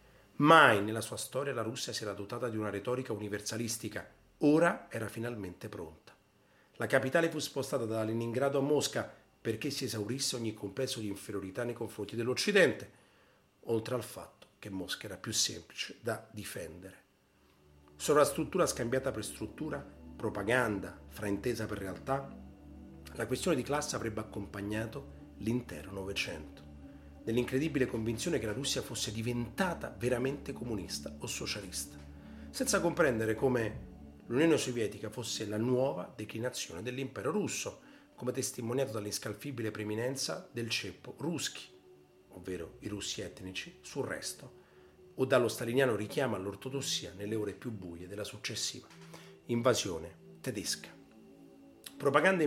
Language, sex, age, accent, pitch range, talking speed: Italian, male, 40-59, native, 100-125 Hz, 130 wpm